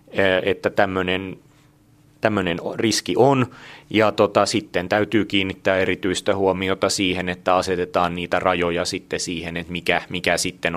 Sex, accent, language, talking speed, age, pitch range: male, native, Finnish, 125 wpm, 30-49, 85-100 Hz